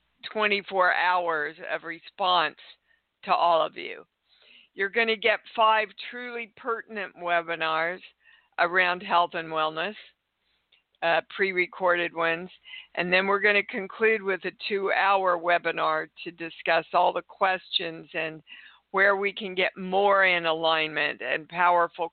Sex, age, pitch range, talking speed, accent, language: female, 50-69, 165-210 Hz, 130 wpm, American, English